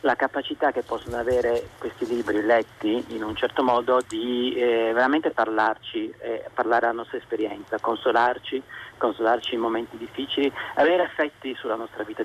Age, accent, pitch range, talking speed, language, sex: 40-59, native, 110-135 Hz, 150 wpm, Italian, male